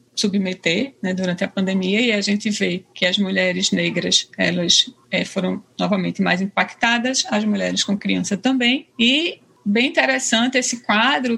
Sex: female